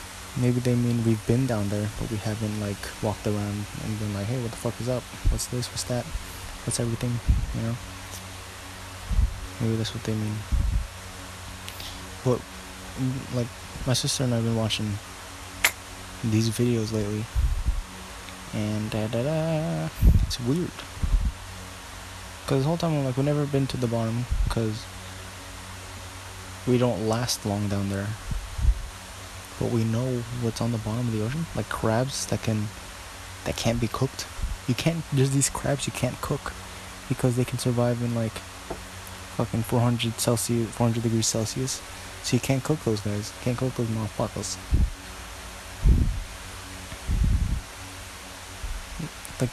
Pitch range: 95-120 Hz